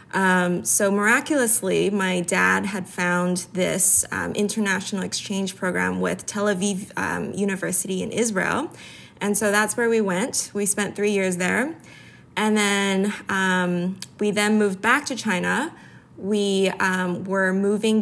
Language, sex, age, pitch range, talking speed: English, female, 20-39, 180-205 Hz, 145 wpm